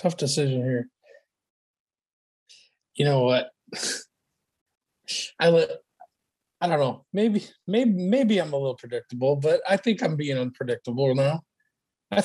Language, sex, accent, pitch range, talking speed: English, male, American, 140-185 Hz, 125 wpm